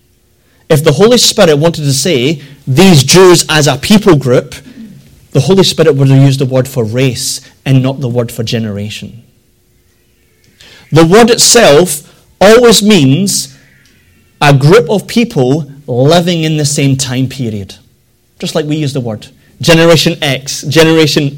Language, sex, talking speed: English, male, 150 wpm